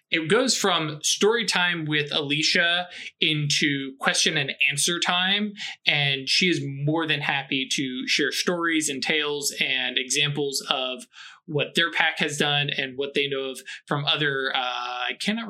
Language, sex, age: English, male, 20-39